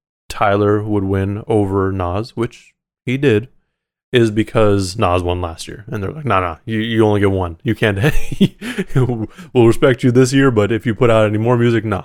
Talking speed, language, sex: 200 wpm, English, male